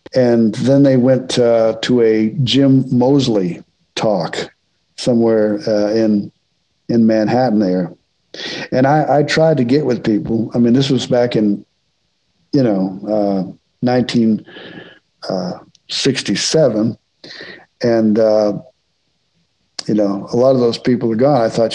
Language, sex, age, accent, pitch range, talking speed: English, male, 50-69, American, 110-130 Hz, 130 wpm